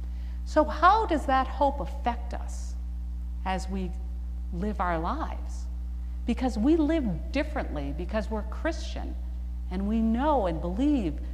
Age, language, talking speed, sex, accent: 50-69, English, 125 wpm, female, American